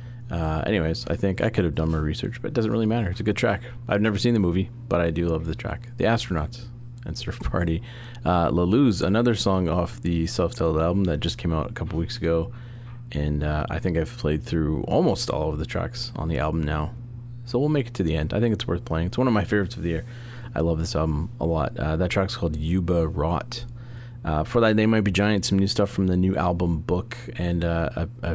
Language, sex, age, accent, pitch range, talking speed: English, male, 30-49, American, 80-120 Hz, 250 wpm